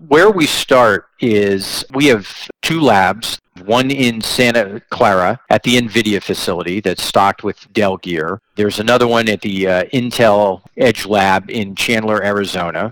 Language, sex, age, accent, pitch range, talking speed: English, male, 40-59, American, 95-120 Hz, 155 wpm